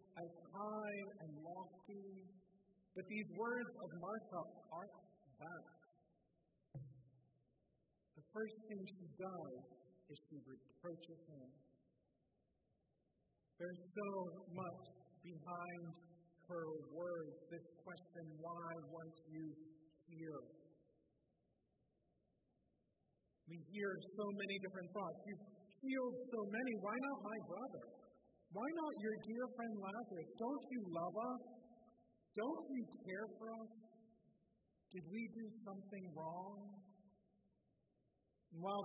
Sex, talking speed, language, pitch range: male, 105 wpm, English, 170-220 Hz